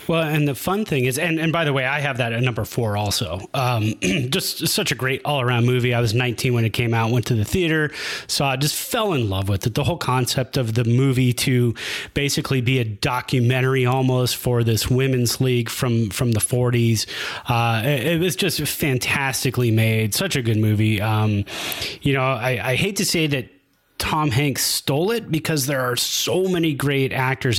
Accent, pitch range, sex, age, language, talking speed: American, 120-145 Hz, male, 30-49, English, 215 wpm